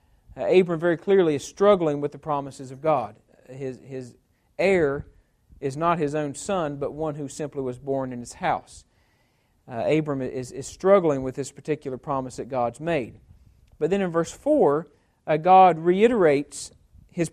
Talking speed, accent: 170 wpm, American